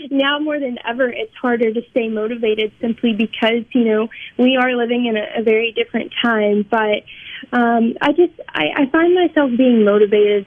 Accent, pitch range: American, 215-245 Hz